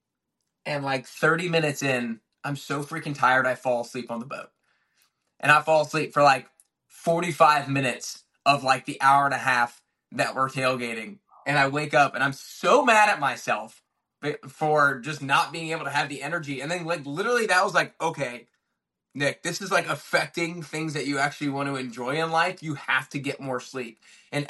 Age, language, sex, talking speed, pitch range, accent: 20-39, English, male, 200 wpm, 135-160 Hz, American